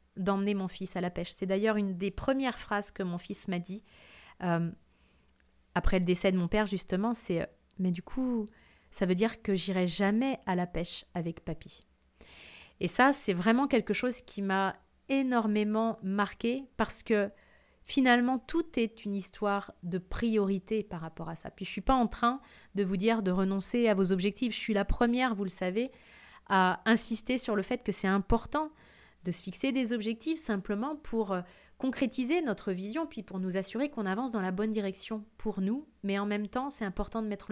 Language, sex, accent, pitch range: French, female, French, 190-235 Hz